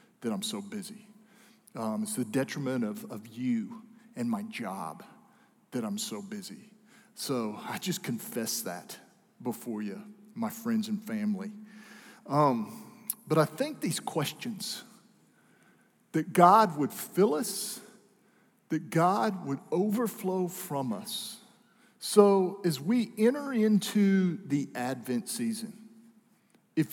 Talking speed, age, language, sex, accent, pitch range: 125 wpm, 50-69, English, male, American, 145-220 Hz